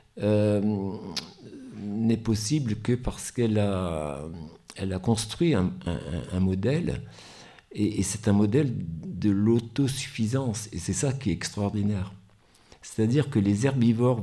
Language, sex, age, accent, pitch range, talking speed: French, male, 60-79, French, 100-120 Hz, 130 wpm